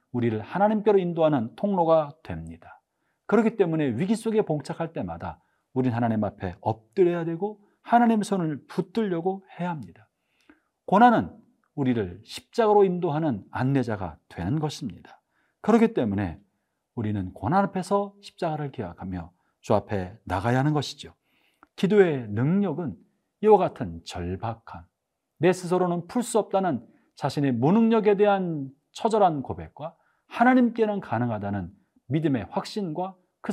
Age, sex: 40-59, male